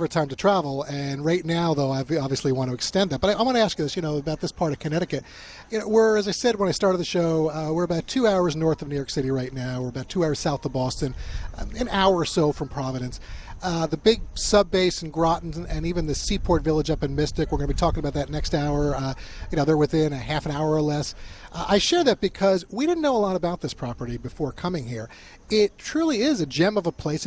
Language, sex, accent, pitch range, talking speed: English, male, American, 135-185 Hz, 270 wpm